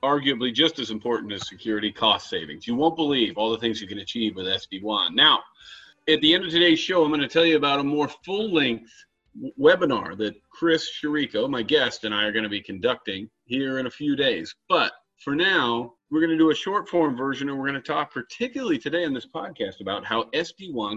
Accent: American